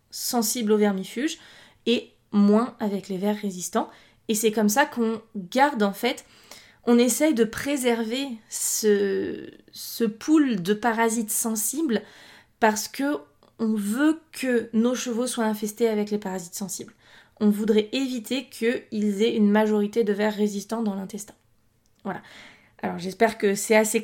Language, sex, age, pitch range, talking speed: French, female, 20-39, 205-240 Hz, 145 wpm